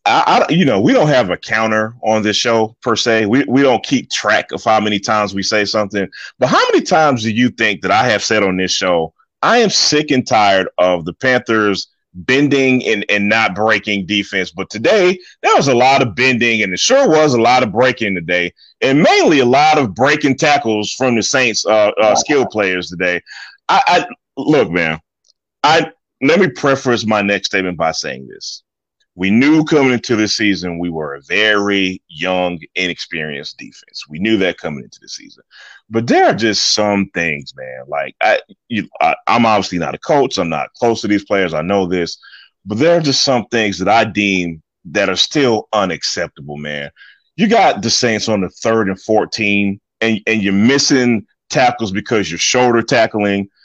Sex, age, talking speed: male, 30-49, 195 wpm